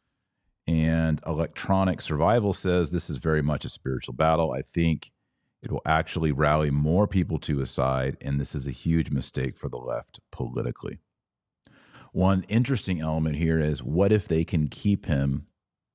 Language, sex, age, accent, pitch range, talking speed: English, male, 40-59, American, 80-100 Hz, 160 wpm